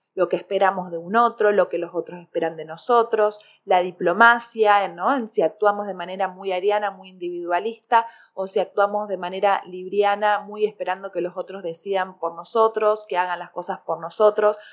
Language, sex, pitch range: Spanish, female, 190-235 Hz